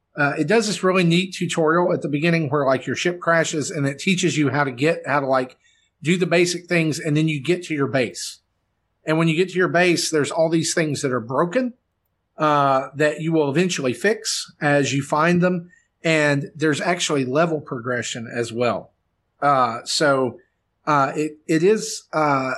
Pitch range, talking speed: 130-165 Hz, 195 wpm